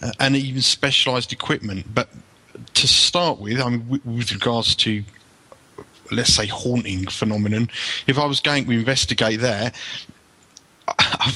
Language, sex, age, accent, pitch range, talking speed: English, male, 30-49, British, 120-145 Hz, 130 wpm